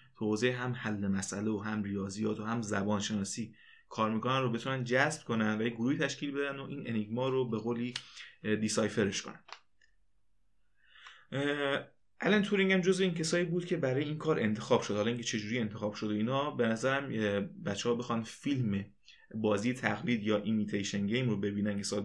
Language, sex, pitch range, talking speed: Persian, male, 105-135 Hz, 170 wpm